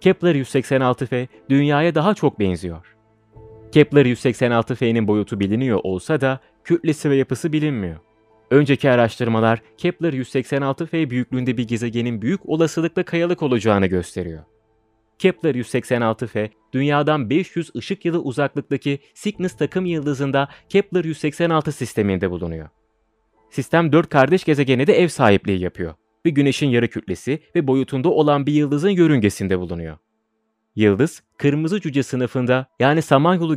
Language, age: Turkish, 30-49